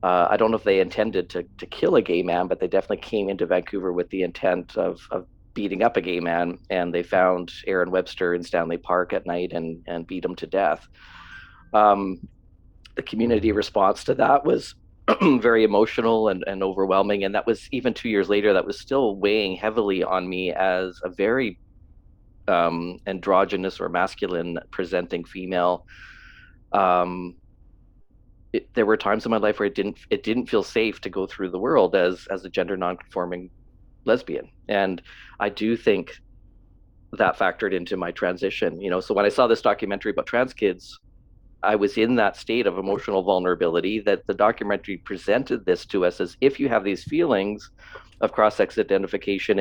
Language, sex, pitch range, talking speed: English, male, 90-105 Hz, 180 wpm